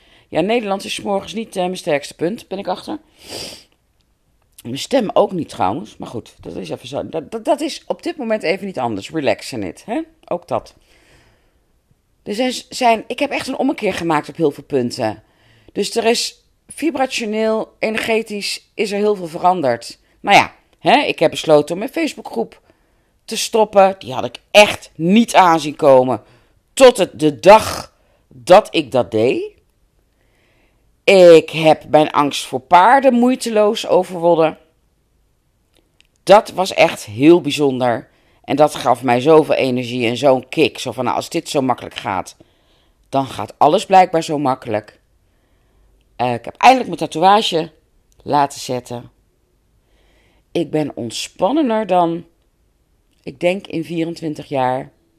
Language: Dutch